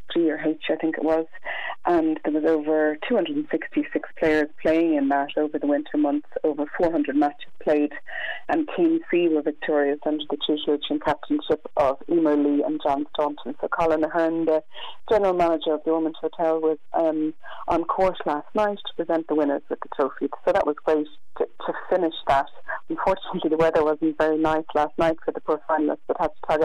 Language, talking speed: English, 205 wpm